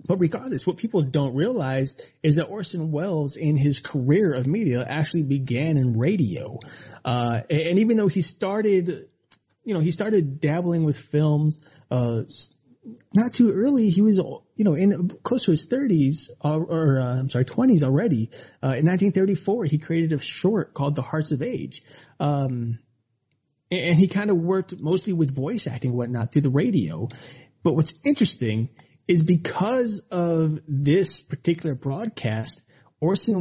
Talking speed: 160 wpm